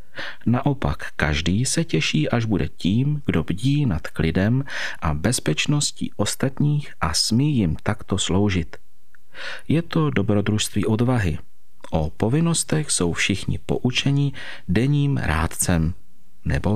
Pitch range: 90-130 Hz